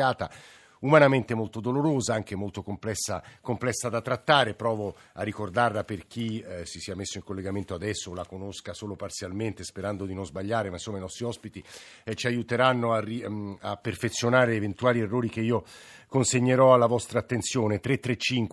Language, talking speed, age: Italian, 160 wpm, 50-69